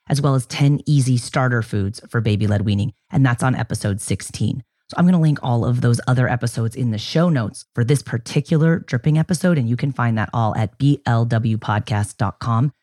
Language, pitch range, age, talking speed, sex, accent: English, 115-150 Hz, 30-49, 200 wpm, female, American